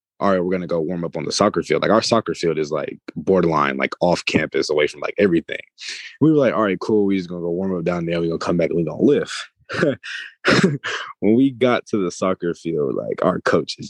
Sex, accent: male, American